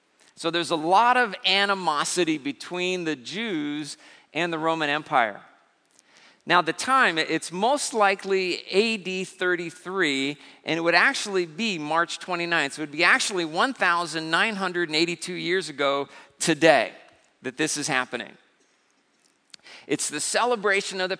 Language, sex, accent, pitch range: English, male, American, 150-205 Hz